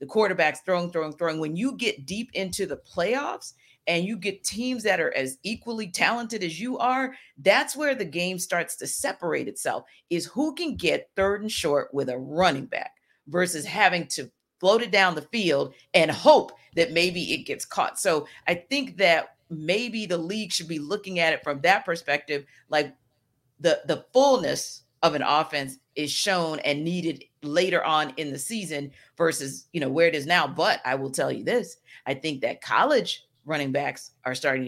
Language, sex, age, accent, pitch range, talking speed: English, female, 40-59, American, 150-205 Hz, 190 wpm